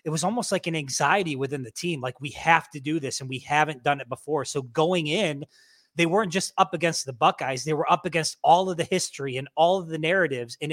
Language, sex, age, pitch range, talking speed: English, male, 20-39, 150-180 Hz, 250 wpm